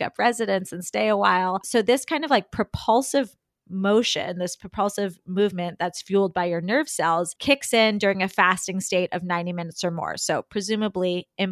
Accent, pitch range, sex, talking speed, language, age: American, 180-220 Hz, female, 190 wpm, English, 20-39